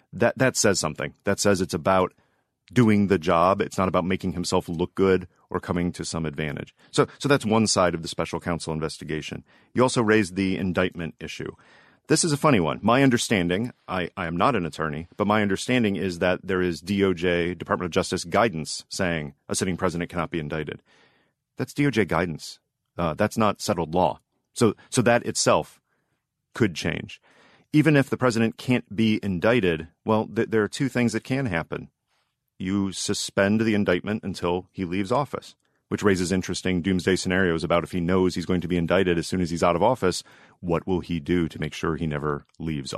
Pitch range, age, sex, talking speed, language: 85-110 Hz, 40-59, male, 195 wpm, English